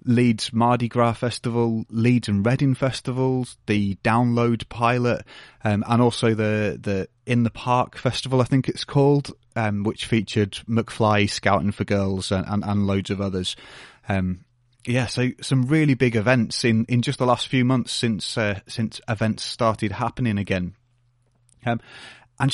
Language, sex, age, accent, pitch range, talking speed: English, male, 30-49, British, 105-125 Hz, 160 wpm